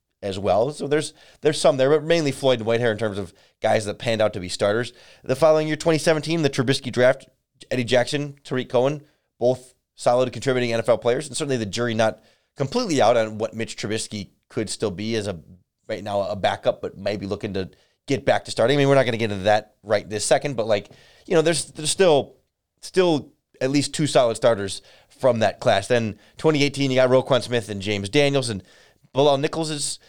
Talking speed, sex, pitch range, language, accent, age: 215 wpm, male, 105-145 Hz, English, American, 30-49